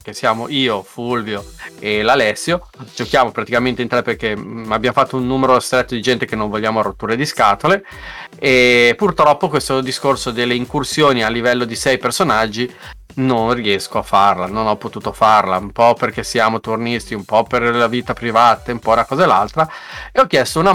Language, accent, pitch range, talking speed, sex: Italian, native, 115-140 Hz, 185 wpm, male